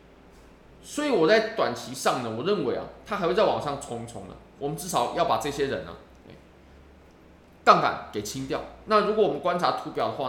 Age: 20-39